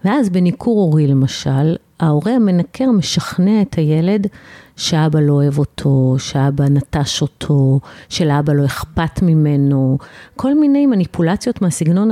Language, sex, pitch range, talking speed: Hebrew, female, 150-190 Hz, 120 wpm